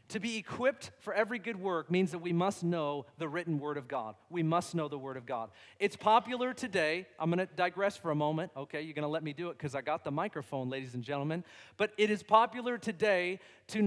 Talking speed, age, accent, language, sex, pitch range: 240 wpm, 40-59, American, English, male, 165-225 Hz